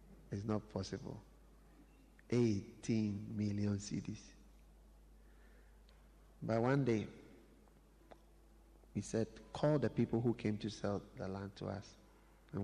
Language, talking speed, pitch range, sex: English, 110 wpm, 105-130 Hz, male